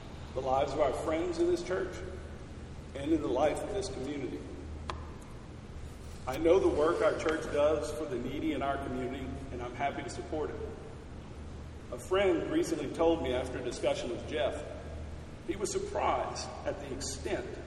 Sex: male